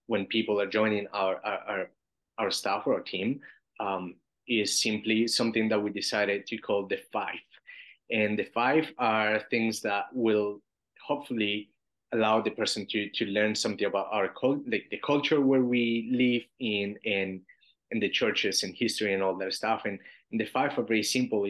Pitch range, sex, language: 100-115 Hz, male, English